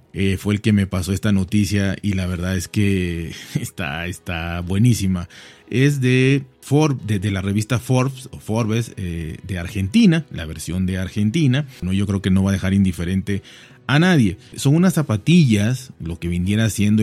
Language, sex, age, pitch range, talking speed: Spanish, male, 30-49, 95-120 Hz, 170 wpm